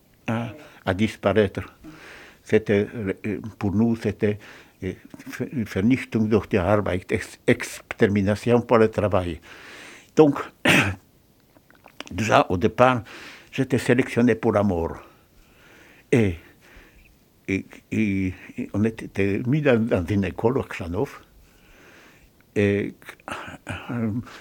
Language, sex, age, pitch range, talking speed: French, male, 60-79, 100-125 Hz, 100 wpm